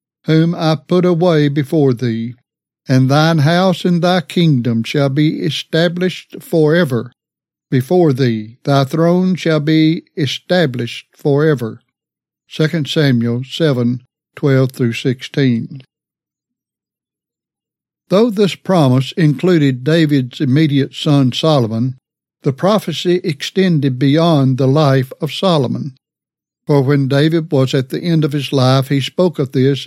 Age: 60-79